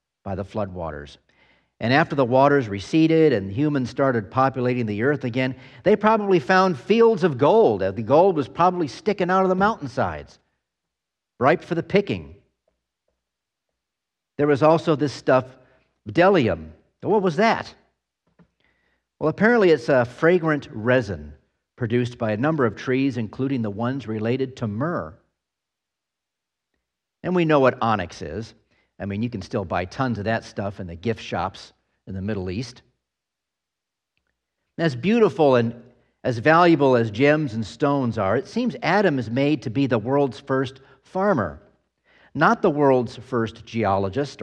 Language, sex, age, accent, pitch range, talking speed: English, male, 50-69, American, 110-160 Hz, 150 wpm